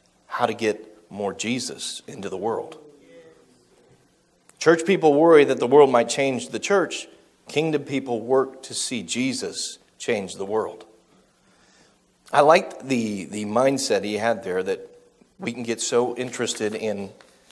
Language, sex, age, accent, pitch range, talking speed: English, male, 30-49, American, 115-145 Hz, 145 wpm